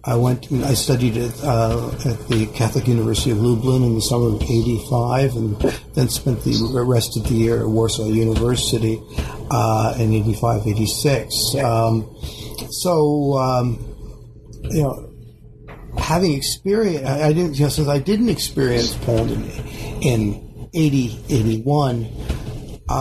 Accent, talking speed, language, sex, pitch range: American, 130 wpm, English, male, 115-145 Hz